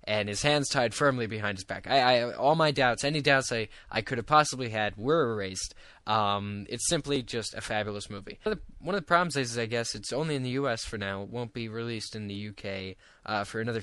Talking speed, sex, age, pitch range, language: 250 wpm, male, 10-29, 100-130 Hz, English